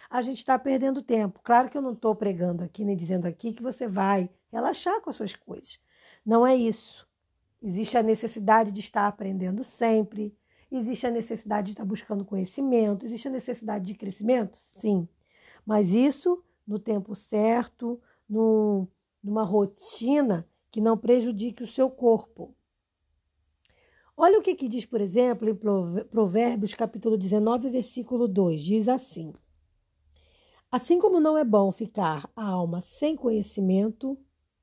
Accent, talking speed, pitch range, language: Brazilian, 145 wpm, 205-255 Hz, Portuguese